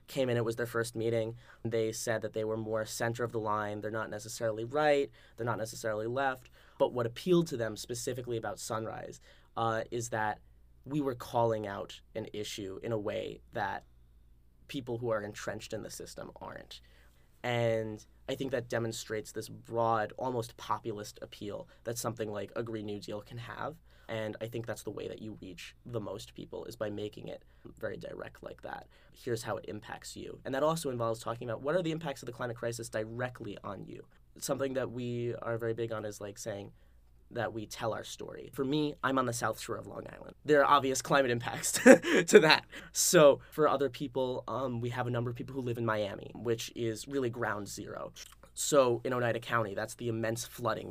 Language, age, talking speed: English, 10-29, 205 wpm